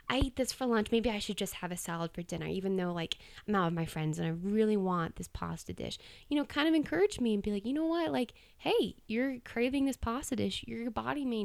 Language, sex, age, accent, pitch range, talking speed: English, female, 20-39, American, 190-235 Hz, 265 wpm